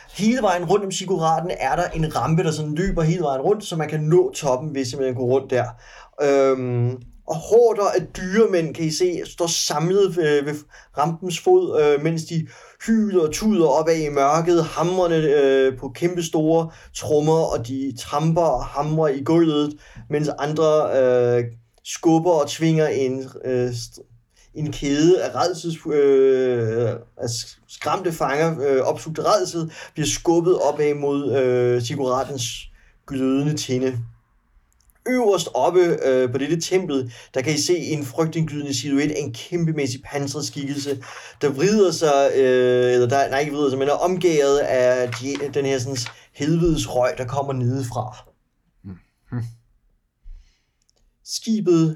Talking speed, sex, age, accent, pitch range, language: 145 wpm, male, 30-49, native, 130-165 Hz, Danish